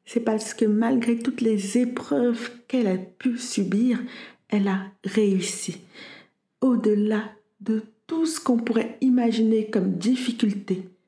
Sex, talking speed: female, 125 wpm